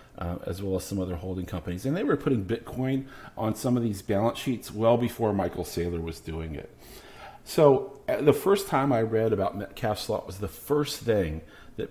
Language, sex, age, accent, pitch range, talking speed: English, male, 40-59, American, 105-140 Hz, 205 wpm